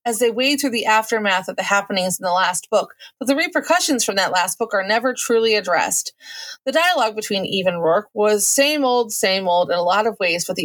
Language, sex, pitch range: English, female, 195-260 Hz